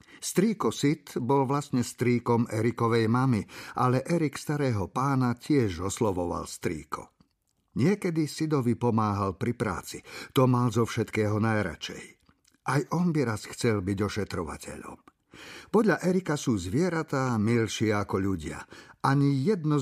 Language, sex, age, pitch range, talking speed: Slovak, male, 50-69, 105-140 Hz, 120 wpm